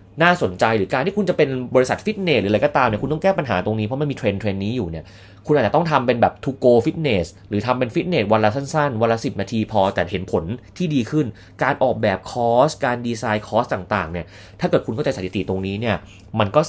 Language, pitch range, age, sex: Thai, 95-125 Hz, 30-49, male